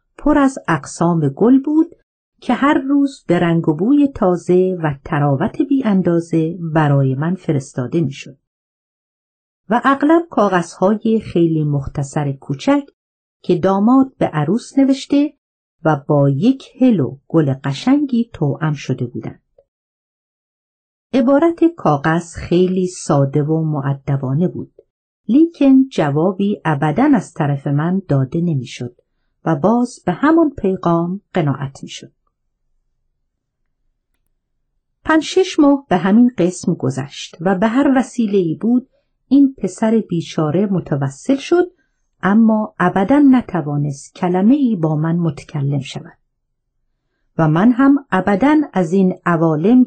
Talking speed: 115 wpm